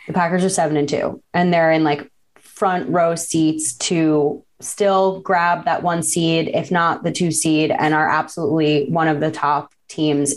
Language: English